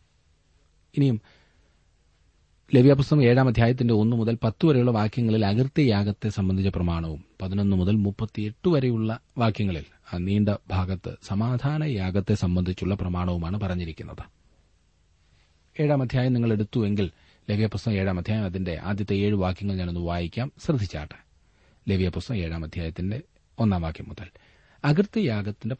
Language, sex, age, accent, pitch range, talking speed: Malayalam, male, 30-49, native, 90-120 Hz, 90 wpm